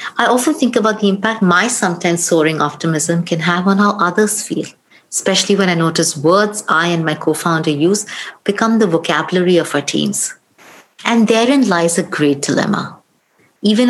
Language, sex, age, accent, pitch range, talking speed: English, female, 50-69, Indian, 165-215 Hz, 170 wpm